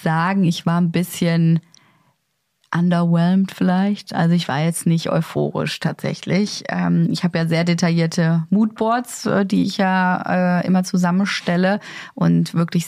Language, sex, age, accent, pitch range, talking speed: German, female, 30-49, German, 165-190 Hz, 125 wpm